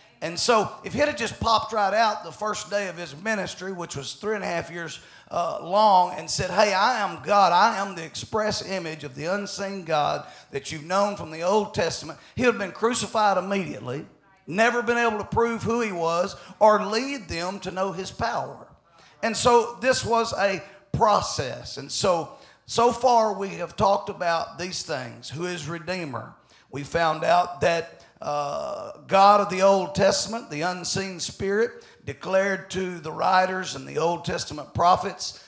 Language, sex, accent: English, male, American